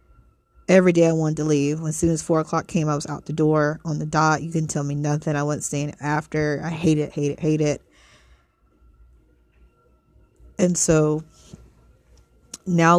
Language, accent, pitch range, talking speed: English, American, 150-170 Hz, 185 wpm